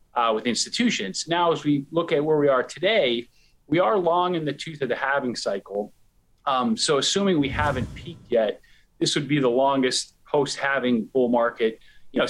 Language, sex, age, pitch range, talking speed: English, male, 40-59, 125-175 Hz, 190 wpm